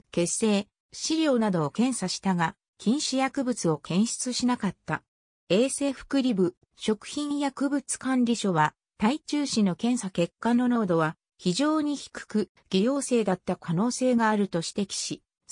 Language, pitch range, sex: Japanese, 170-265 Hz, female